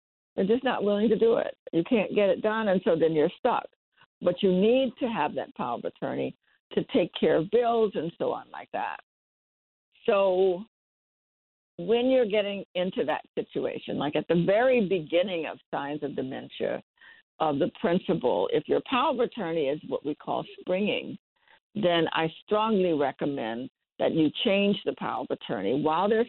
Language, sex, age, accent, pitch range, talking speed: English, female, 60-79, American, 155-220 Hz, 180 wpm